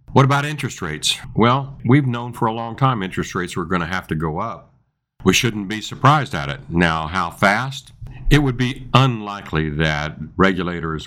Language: English